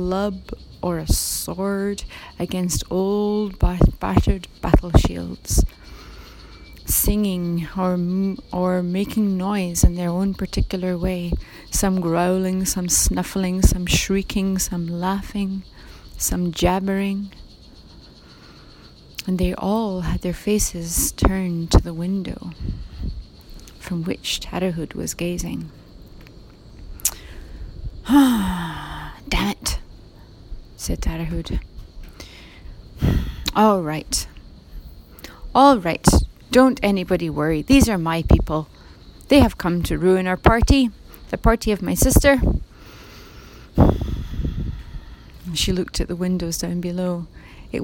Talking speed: 100 wpm